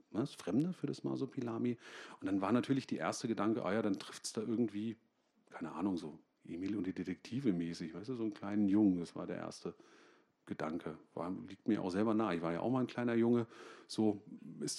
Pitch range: 105-140 Hz